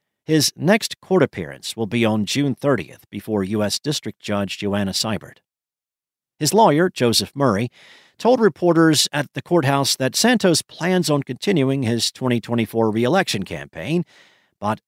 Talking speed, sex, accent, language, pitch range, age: 135 wpm, male, American, English, 110-140 Hz, 50-69